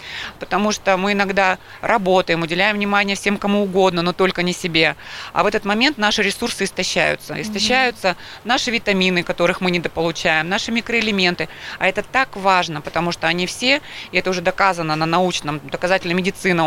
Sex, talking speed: female, 160 wpm